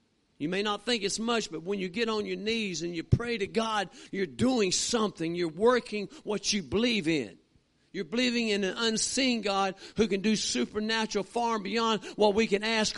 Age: 50-69